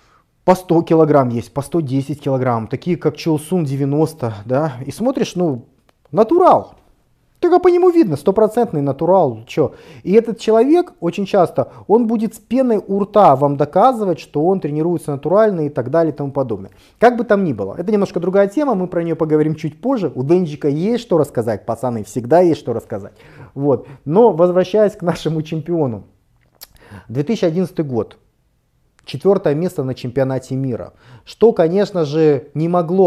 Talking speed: 160 wpm